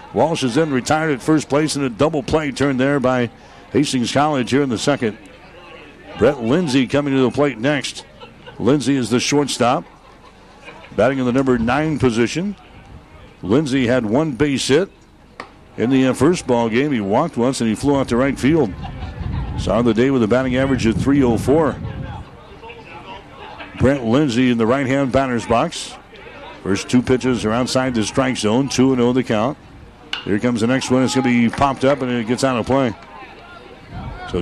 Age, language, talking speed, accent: 60-79, English, 180 wpm, American